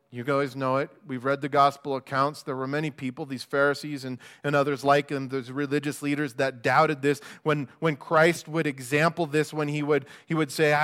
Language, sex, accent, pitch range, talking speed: English, male, American, 140-175 Hz, 215 wpm